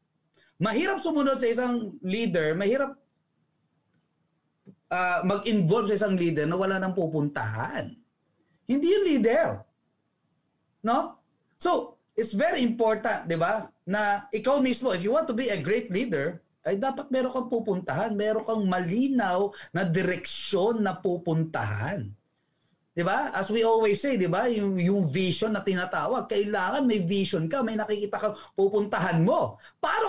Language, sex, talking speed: Filipino, male, 140 wpm